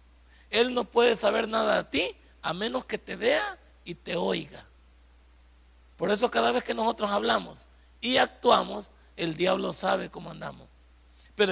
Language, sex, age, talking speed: Spanish, male, 50-69, 155 wpm